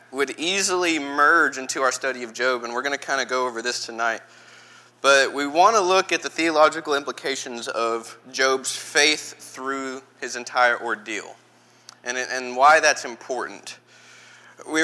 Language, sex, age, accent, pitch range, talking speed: English, male, 20-39, American, 120-150 Hz, 160 wpm